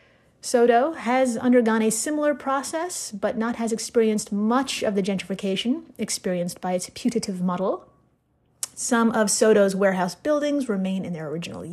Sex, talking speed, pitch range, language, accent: female, 145 wpm, 195-255 Hz, English, American